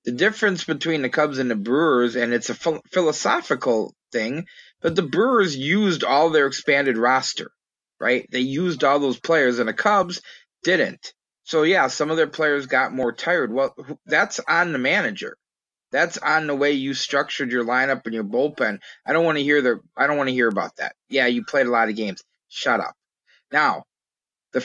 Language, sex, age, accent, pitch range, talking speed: English, male, 30-49, American, 120-150 Hz, 195 wpm